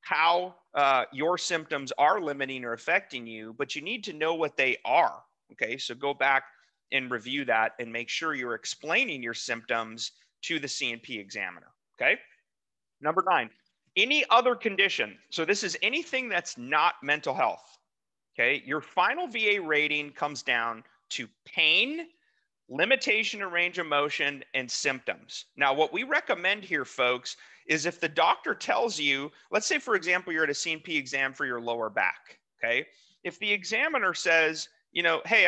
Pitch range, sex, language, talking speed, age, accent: 135-195 Hz, male, English, 165 wpm, 30-49, American